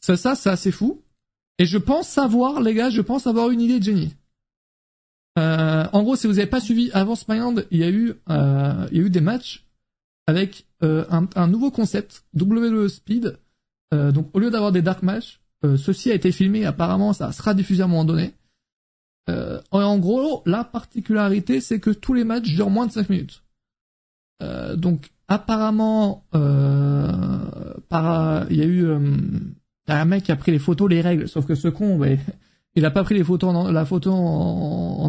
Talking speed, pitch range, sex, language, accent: 195 wpm, 155-205 Hz, male, French, French